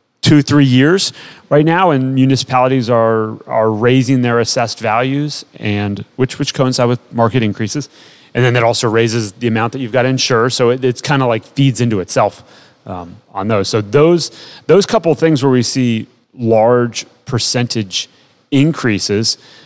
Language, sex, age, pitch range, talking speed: English, male, 30-49, 110-130 Hz, 170 wpm